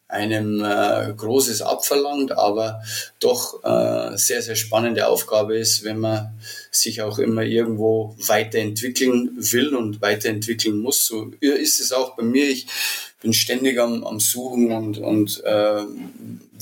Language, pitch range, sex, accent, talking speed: German, 110-120 Hz, male, German, 135 wpm